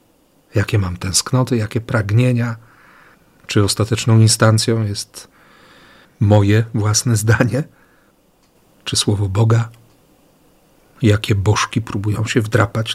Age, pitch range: 40-59, 105-120 Hz